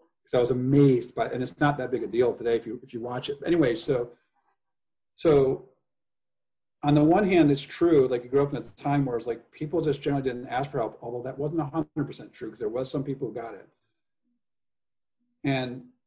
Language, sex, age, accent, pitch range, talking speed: English, male, 40-59, American, 120-150 Hz, 230 wpm